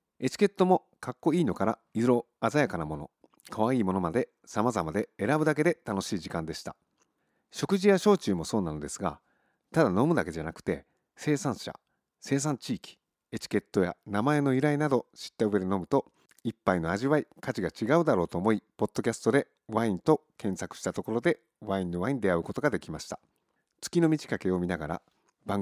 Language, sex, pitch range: Japanese, male, 95-150 Hz